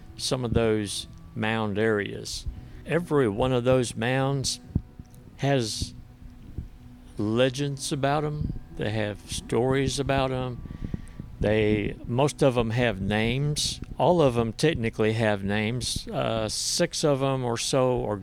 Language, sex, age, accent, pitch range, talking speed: English, male, 60-79, American, 105-125 Hz, 125 wpm